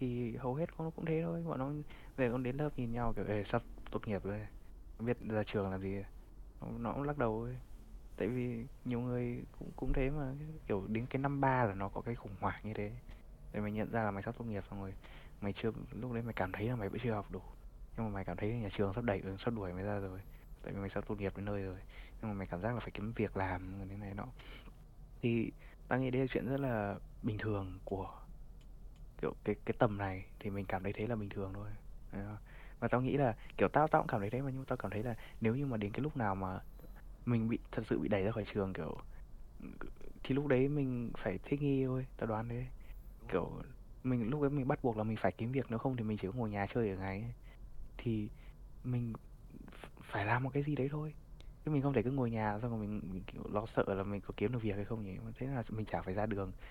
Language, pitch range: Vietnamese, 100-125 Hz